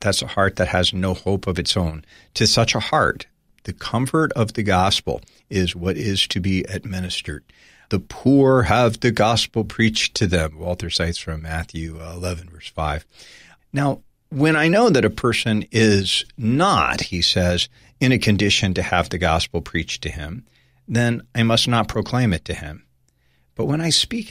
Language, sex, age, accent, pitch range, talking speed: English, male, 50-69, American, 90-130 Hz, 180 wpm